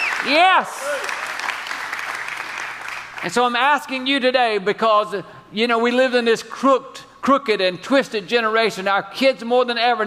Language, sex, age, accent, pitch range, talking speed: English, male, 50-69, American, 215-270 Hz, 145 wpm